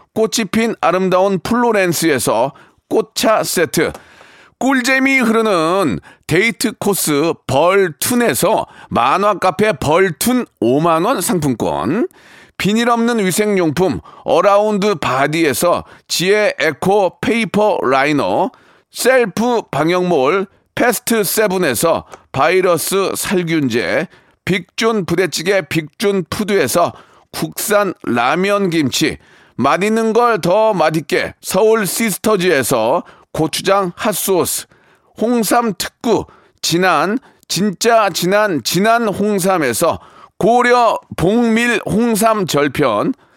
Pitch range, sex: 185-230 Hz, male